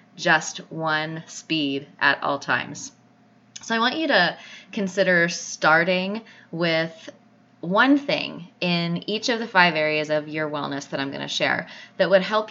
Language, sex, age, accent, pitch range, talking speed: English, female, 20-39, American, 155-200 Hz, 160 wpm